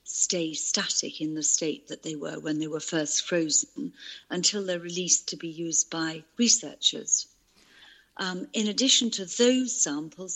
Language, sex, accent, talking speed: English, female, British, 155 wpm